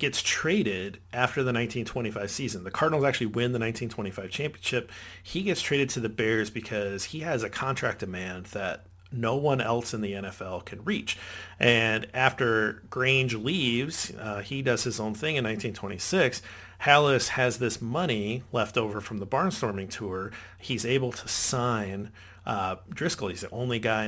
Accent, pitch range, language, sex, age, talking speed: American, 100-125 Hz, English, male, 40-59, 165 wpm